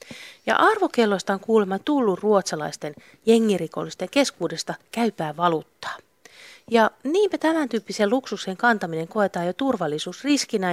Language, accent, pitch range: Finnish, native, 190-270 Hz